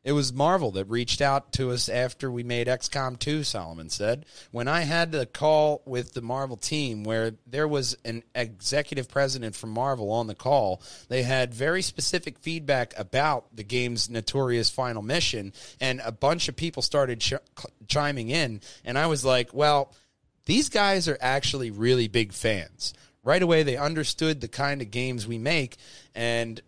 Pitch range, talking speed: 110-145 Hz, 175 wpm